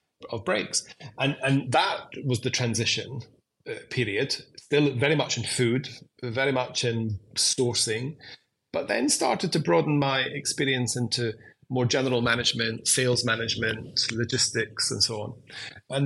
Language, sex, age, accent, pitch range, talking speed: English, male, 30-49, British, 115-135 Hz, 140 wpm